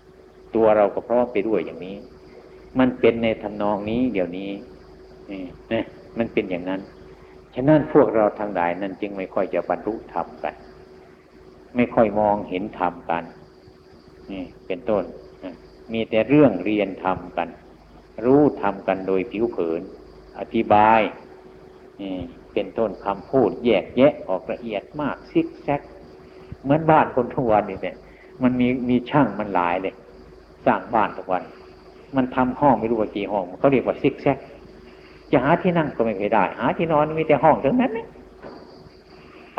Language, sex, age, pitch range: Thai, male, 60-79, 95-130 Hz